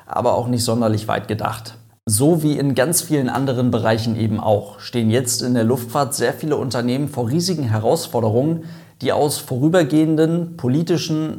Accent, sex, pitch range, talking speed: German, male, 115-130 Hz, 160 wpm